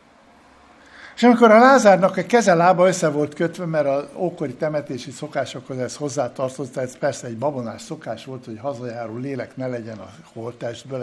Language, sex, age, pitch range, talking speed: Hungarian, male, 60-79, 135-210 Hz, 165 wpm